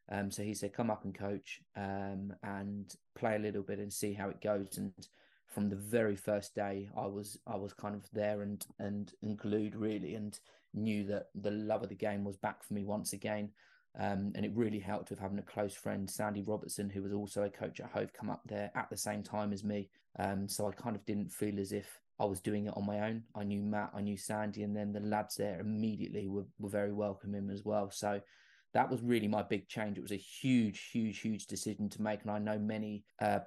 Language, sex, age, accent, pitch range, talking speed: English, male, 20-39, British, 100-105 Hz, 240 wpm